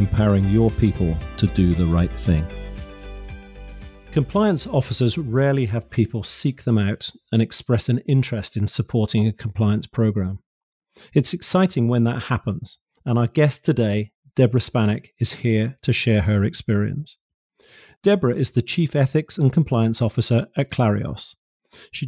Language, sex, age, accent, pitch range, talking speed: English, male, 40-59, British, 105-135 Hz, 145 wpm